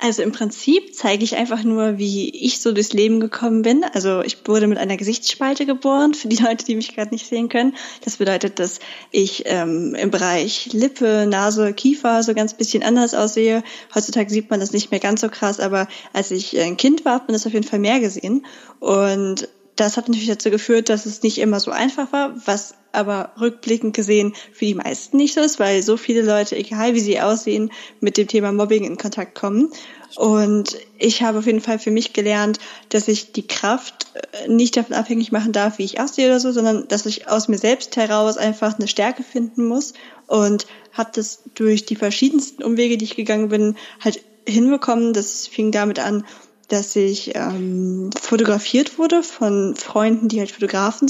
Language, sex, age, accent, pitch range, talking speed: German, female, 10-29, German, 210-240 Hz, 195 wpm